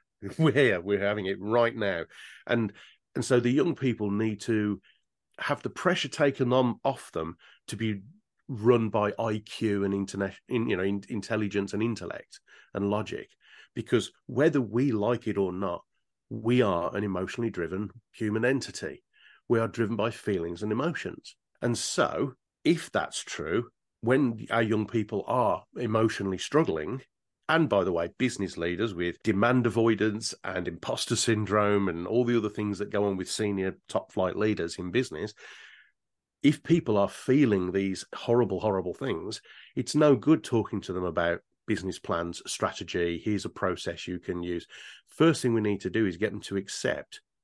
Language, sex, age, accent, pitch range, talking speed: English, male, 40-59, British, 100-120 Hz, 165 wpm